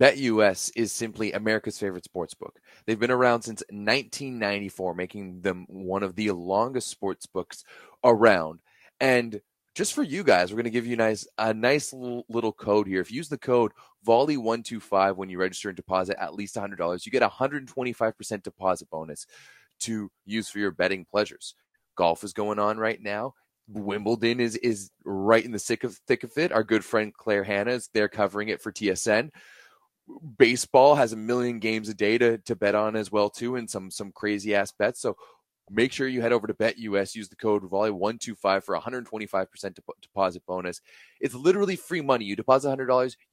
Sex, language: male, English